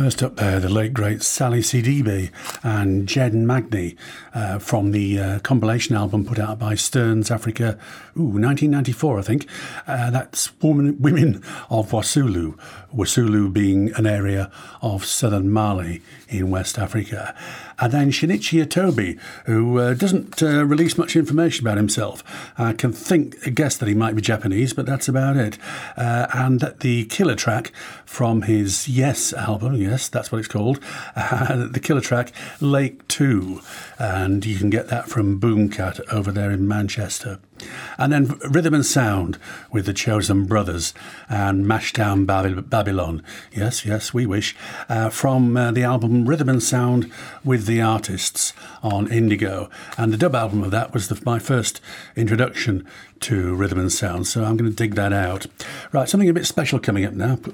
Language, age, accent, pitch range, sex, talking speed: English, 50-69, British, 105-130 Hz, male, 165 wpm